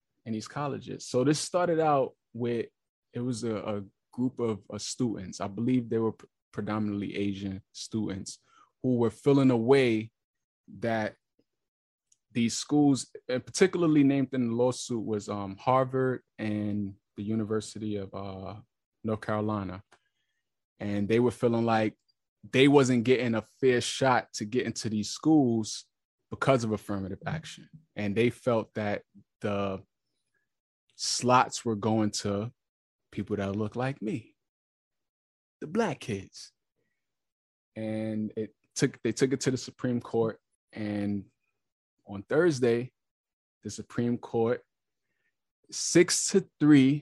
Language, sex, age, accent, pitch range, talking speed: English, male, 20-39, American, 105-130 Hz, 130 wpm